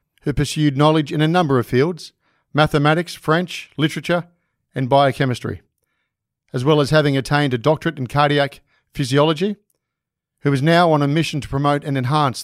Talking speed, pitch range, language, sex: 160 wpm, 135-160 Hz, English, male